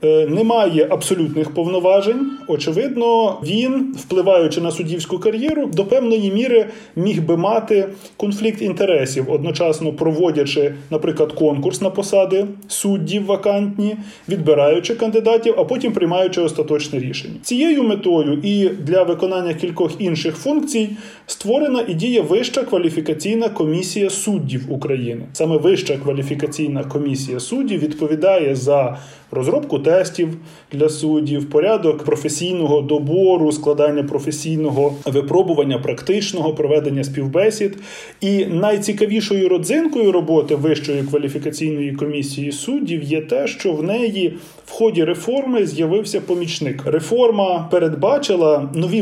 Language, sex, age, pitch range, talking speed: Ukrainian, male, 20-39, 150-205 Hz, 110 wpm